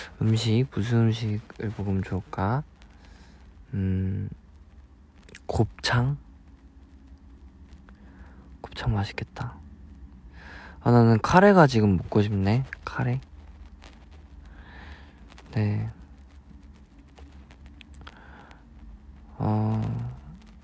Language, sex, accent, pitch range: Korean, male, native, 75-105 Hz